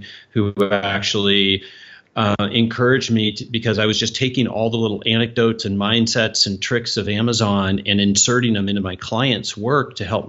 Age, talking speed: 40-59, 170 wpm